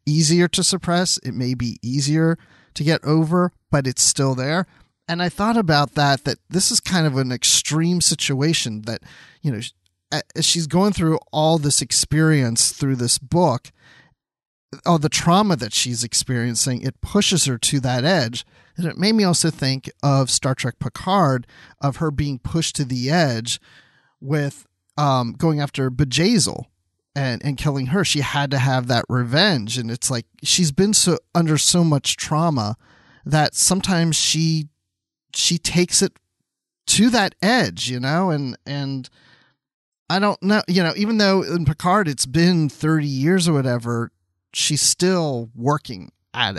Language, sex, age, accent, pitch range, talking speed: English, male, 30-49, American, 130-170 Hz, 160 wpm